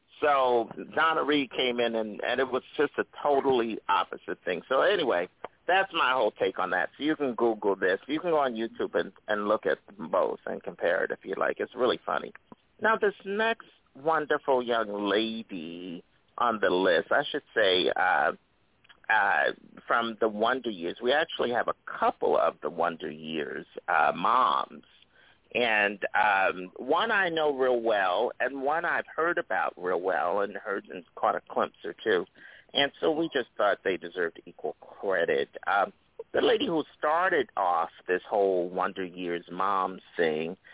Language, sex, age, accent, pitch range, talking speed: English, male, 50-69, American, 105-165 Hz, 175 wpm